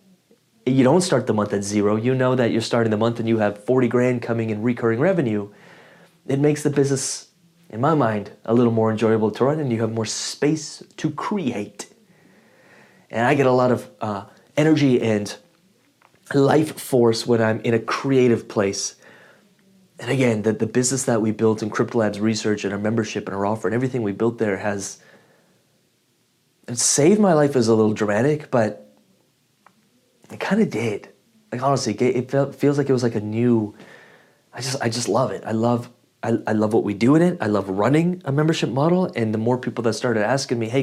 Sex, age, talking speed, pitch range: male, 30-49, 205 wpm, 110-135 Hz